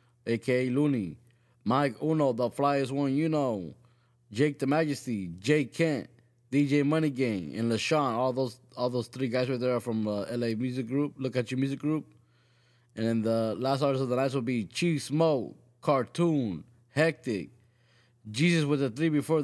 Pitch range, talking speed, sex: 120-135 Hz, 175 wpm, male